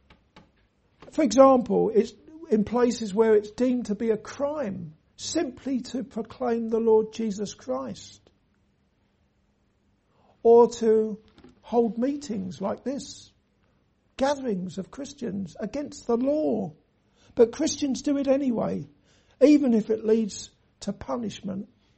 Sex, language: male, English